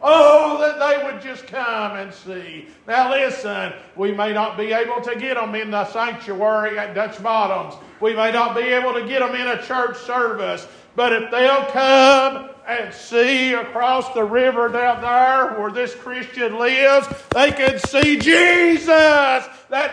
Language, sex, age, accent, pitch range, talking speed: English, male, 50-69, American, 245-315 Hz, 170 wpm